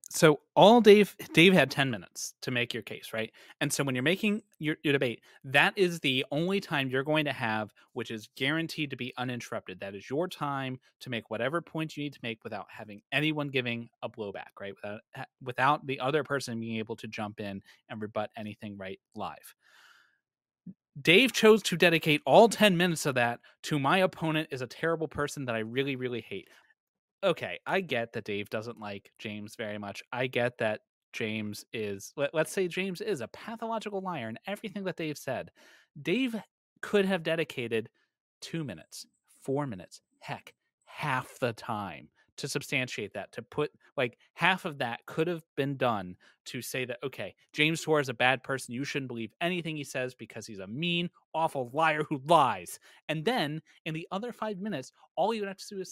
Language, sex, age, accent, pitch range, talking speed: English, male, 30-49, American, 120-175 Hz, 195 wpm